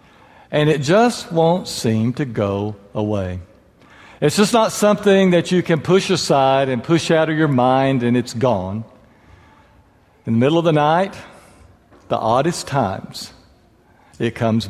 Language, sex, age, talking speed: English, male, 60-79, 150 wpm